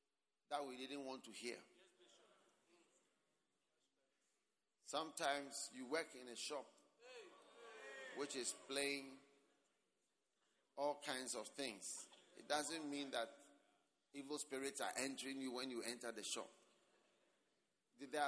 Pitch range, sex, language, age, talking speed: 135-195 Hz, male, English, 50-69, 110 wpm